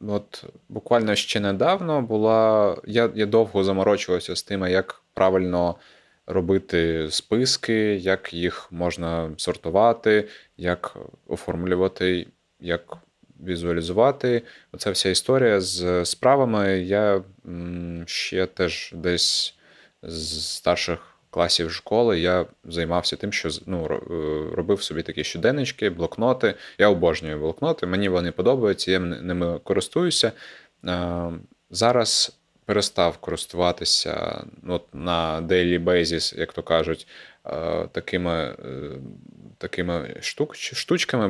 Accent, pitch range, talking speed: native, 85-100 Hz, 100 wpm